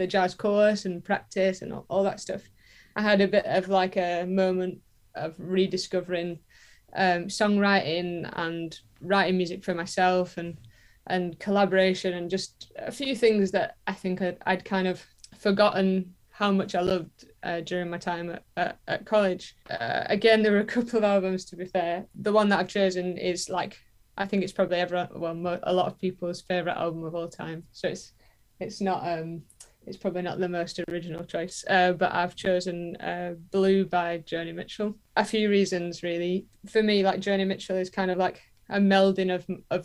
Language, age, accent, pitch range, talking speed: English, 20-39, British, 175-195 Hz, 190 wpm